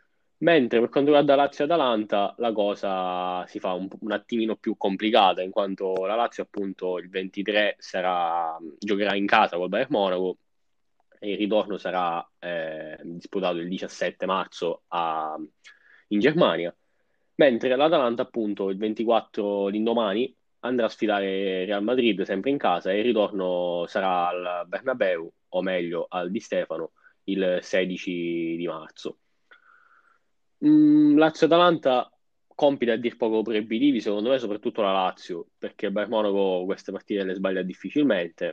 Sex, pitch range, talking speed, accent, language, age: male, 95-115 Hz, 135 wpm, native, Italian, 20-39